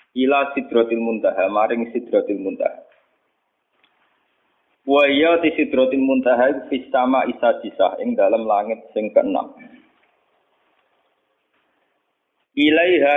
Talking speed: 90 wpm